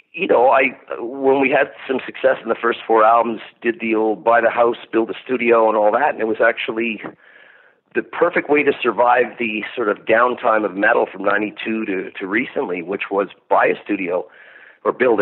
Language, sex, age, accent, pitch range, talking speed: English, male, 40-59, American, 110-135 Hz, 205 wpm